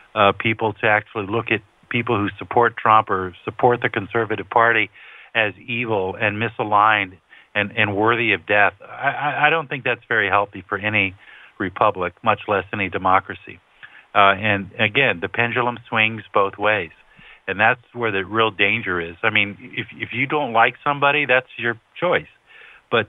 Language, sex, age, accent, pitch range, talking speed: English, male, 50-69, American, 105-125 Hz, 170 wpm